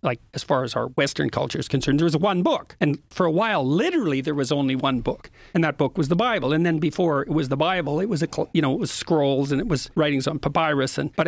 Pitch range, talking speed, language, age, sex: 140-170 Hz, 280 wpm, English, 50-69, male